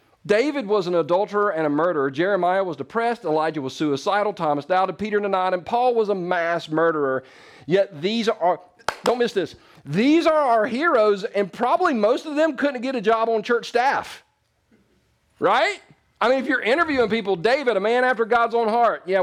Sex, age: male, 40-59